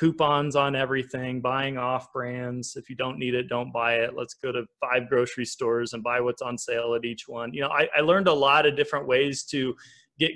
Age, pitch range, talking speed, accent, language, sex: 20-39, 125-150 Hz, 230 wpm, American, English, male